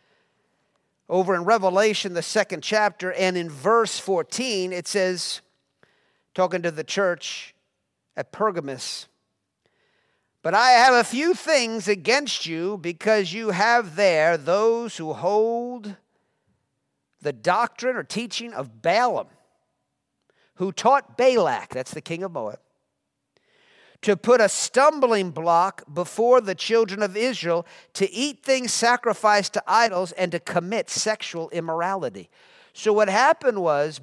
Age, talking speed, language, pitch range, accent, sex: 50-69, 125 wpm, English, 180-255 Hz, American, male